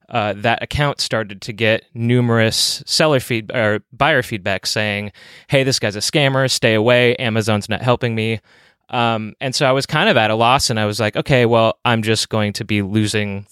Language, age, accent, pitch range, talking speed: English, 20-39, American, 110-135 Hz, 210 wpm